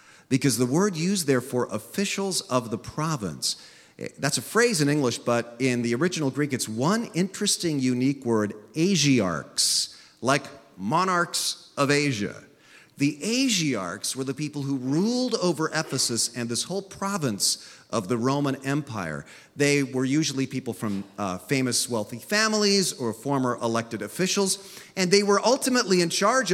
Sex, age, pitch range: male, 40-59, 120-185 Hz